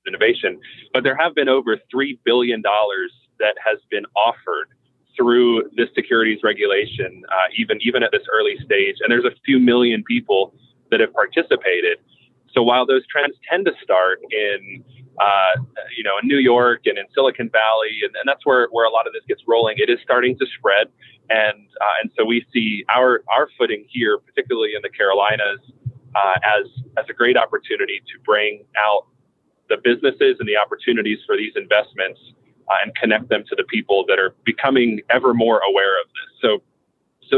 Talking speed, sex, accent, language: 185 wpm, male, American, English